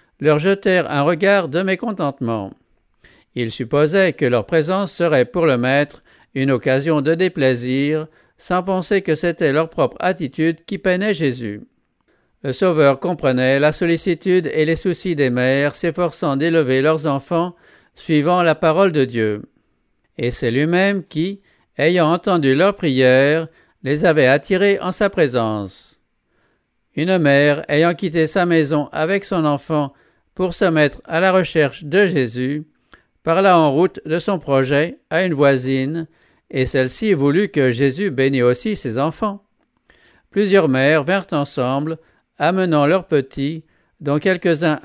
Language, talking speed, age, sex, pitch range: English, 140 wpm, 50-69, male, 135-180 Hz